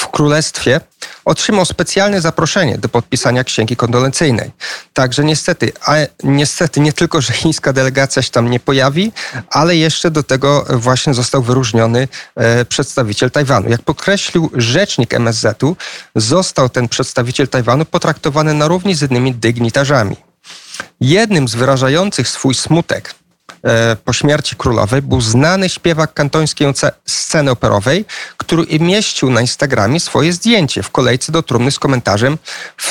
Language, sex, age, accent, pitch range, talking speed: Polish, male, 40-59, native, 125-160 Hz, 130 wpm